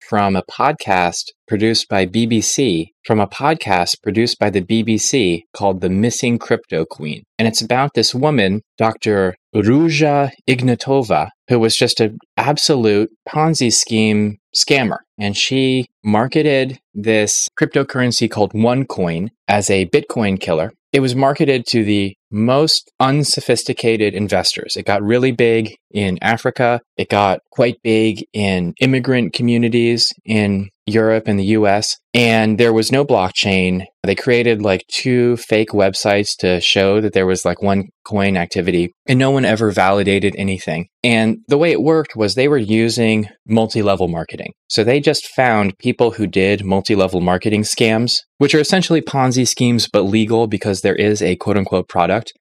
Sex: male